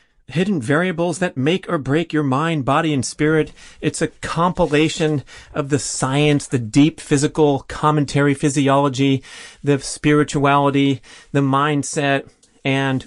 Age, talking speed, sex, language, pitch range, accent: 30-49, 125 wpm, male, English, 115-145 Hz, American